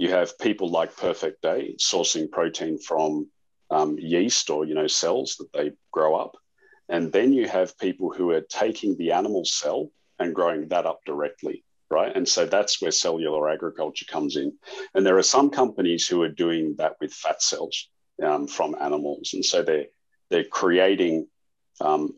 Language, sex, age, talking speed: English, male, 40-59, 175 wpm